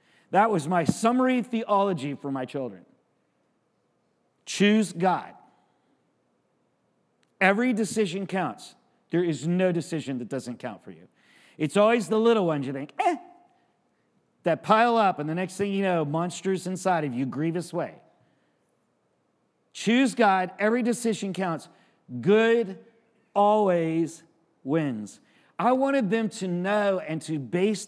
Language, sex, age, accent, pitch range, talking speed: English, male, 50-69, American, 165-215 Hz, 130 wpm